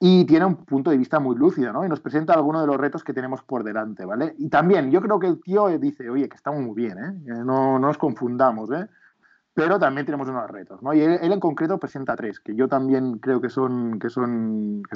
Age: 20-39